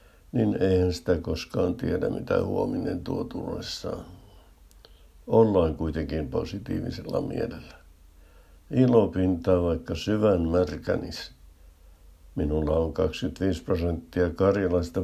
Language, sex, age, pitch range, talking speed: Finnish, male, 60-79, 80-95 Hz, 90 wpm